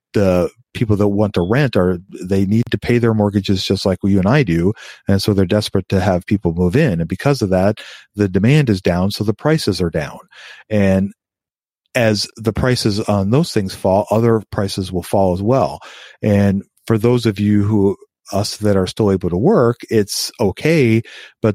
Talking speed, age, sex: 200 wpm, 40-59, male